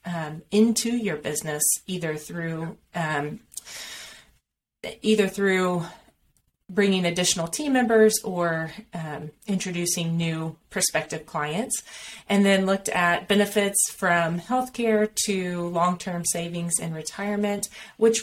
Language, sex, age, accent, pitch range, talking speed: English, female, 30-49, American, 170-210 Hz, 100 wpm